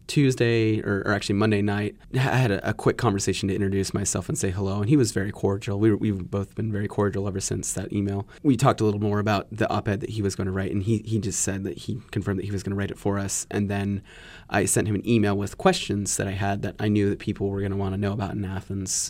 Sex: male